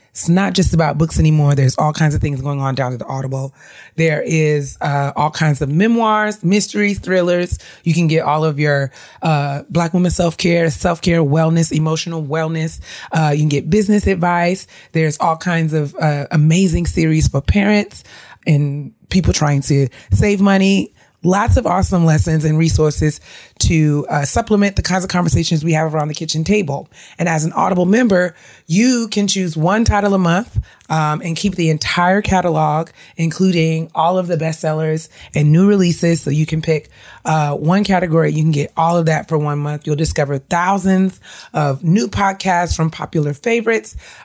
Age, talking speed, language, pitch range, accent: 30-49, 180 wpm, English, 150-185 Hz, American